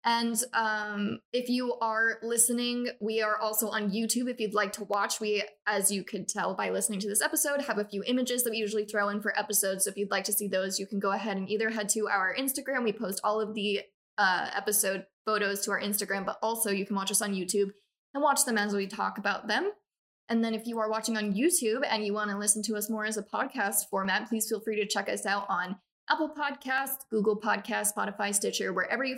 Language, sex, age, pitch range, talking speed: English, female, 10-29, 205-230 Hz, 240 wpm